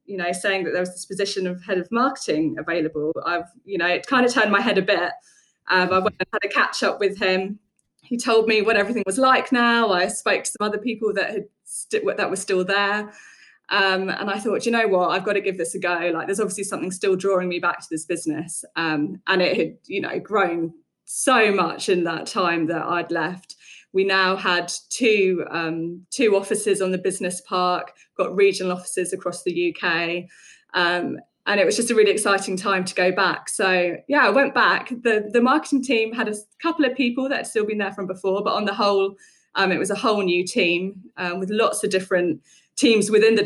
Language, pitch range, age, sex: English, 180-220 Hz, 20-39, female